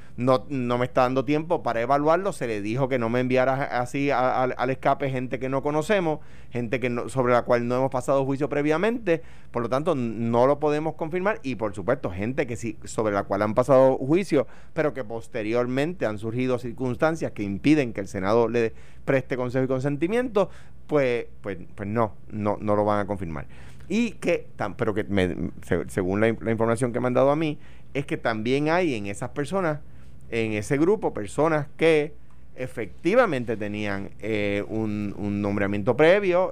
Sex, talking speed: male, 185 wpm